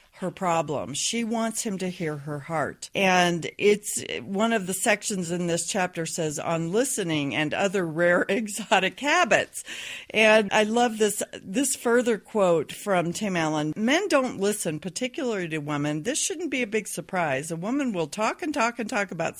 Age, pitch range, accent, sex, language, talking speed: 50-69, 175-245 Hz, American, female, English, 175 wpm